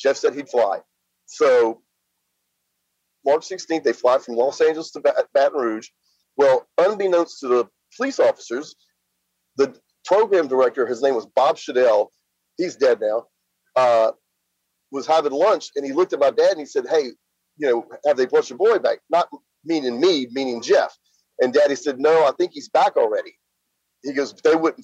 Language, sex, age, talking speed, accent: English, male, 40-59, 175 wpm, American